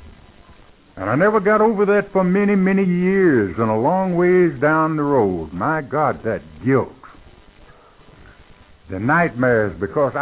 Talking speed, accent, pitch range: 140 wpm, American, 115-165 Hz